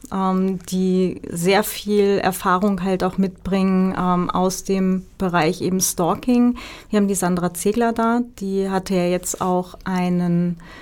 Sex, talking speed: female, 140 wpm